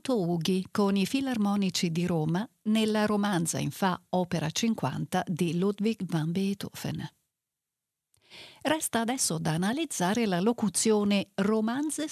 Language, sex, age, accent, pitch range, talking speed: Italian, female, 50-69, native, 175-235 Hz, 115 wpm